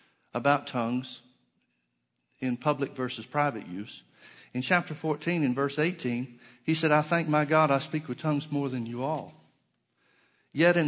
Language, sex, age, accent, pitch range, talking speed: English, male, 60-79, American, 130-155 Hz, 160 wpm